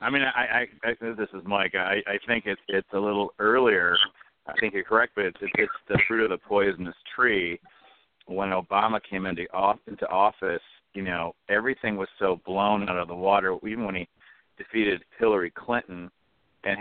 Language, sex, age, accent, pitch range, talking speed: English, male, 50-69, American, 95-115 Hz, 185 wpm